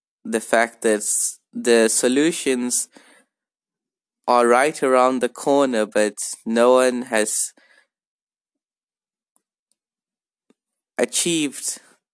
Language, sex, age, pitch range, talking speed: English, male, 20-39, 110-130 Hz, 75 wpm